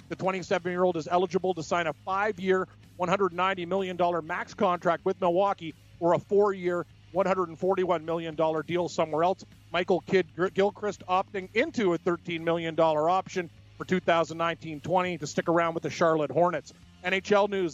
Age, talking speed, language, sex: 40-59, 140 wpm, English, male